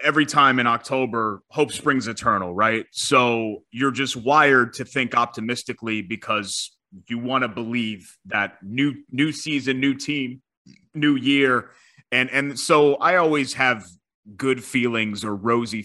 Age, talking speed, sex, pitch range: 30-49, 145 wpm, male, 115-140 Hz